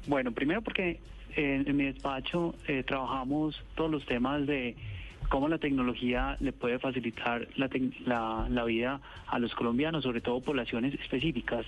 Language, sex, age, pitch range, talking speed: Spanish, male, 30-49, 120-145 Hz, 155 wpm